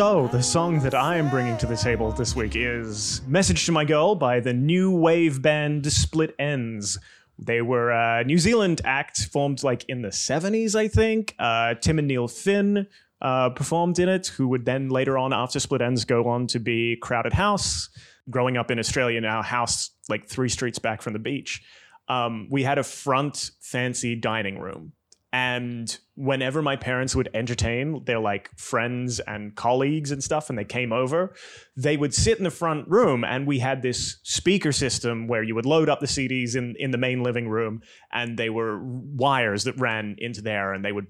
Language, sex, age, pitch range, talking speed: English, male, 30-49, 120-150 Hz, 195 wpm